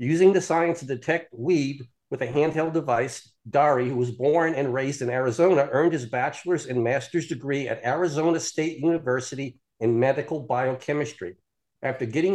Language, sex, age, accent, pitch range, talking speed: English, male, 50-69, American, 130-155 Hz, 160 wpm